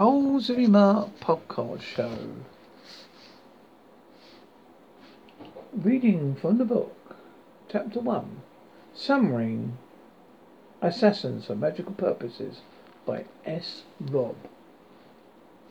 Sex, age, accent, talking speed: male, 60-79, British, 70 wpm